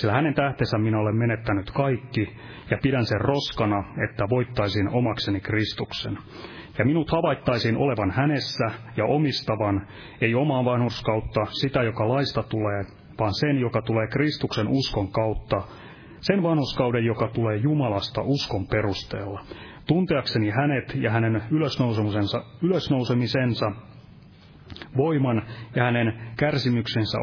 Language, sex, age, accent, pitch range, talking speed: Finnish, male, 30-49, native, 105-140 Hz, 115 wpm